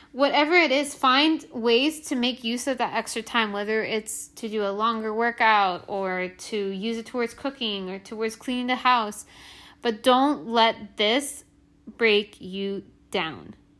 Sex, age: female, 20-39